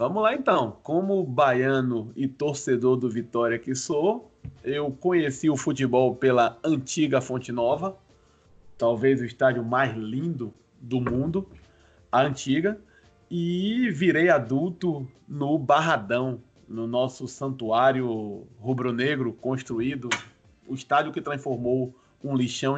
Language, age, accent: Portuguese, 20-39, Brazilian